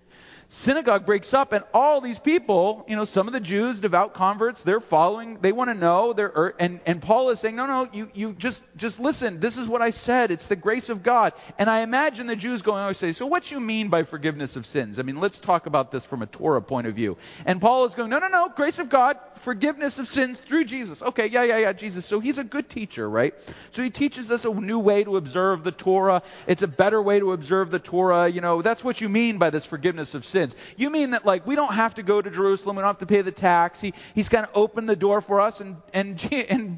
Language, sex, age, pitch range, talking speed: English, male, 30-49, 175-235 Hz, 260 wpm